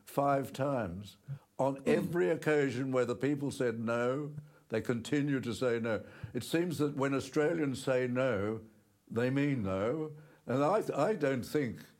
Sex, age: male, 60-79